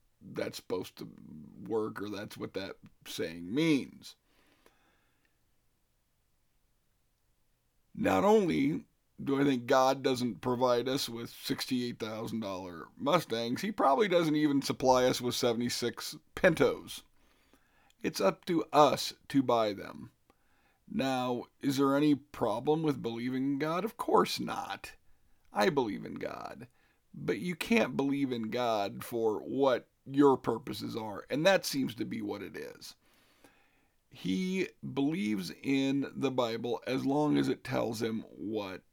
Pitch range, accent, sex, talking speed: 115-145 Hz, American, male, 130 wpm